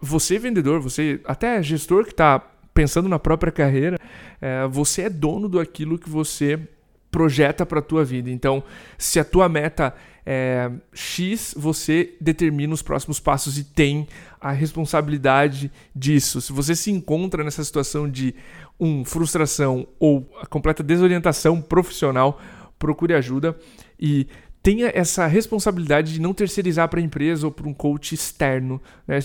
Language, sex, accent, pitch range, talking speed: Portuguese, male, Brazilian, 140-165 Hz, 140 wpm